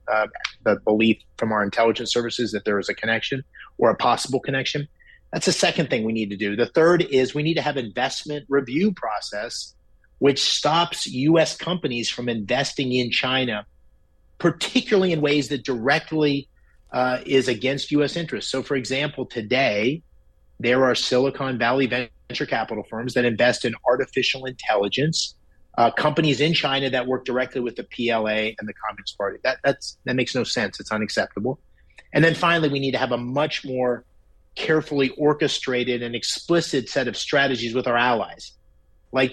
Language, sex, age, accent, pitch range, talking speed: English, male, 30-49, American, 115-140 Hz, 165 wpm